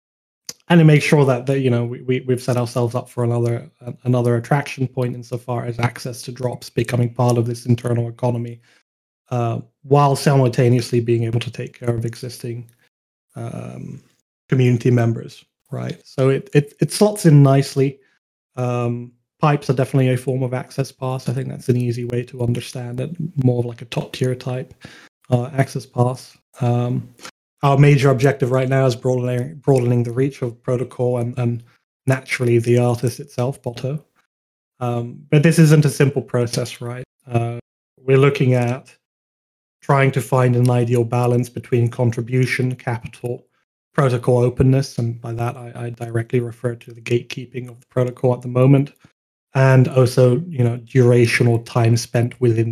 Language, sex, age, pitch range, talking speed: English, male, 30-49, 120-135 Hz, 165 wpm